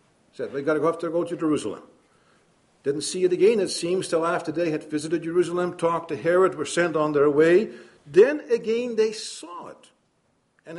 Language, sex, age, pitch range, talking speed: English, male, 50-69, 150-205 Hz, 200 wpm